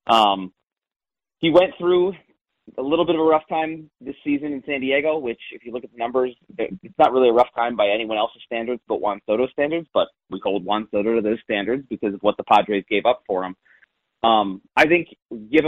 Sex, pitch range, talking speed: male, 115-145 Hz, 220 wpm